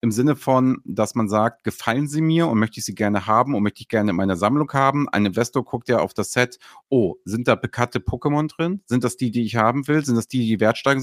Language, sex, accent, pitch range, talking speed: German, male, German, 115-140 Hz, 260 wpm